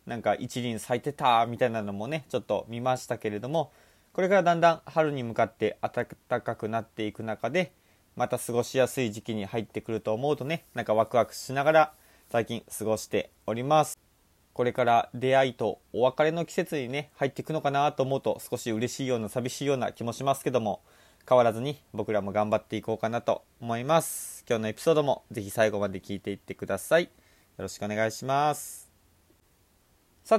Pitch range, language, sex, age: 110-150 Hz, Japanese, male, 20-39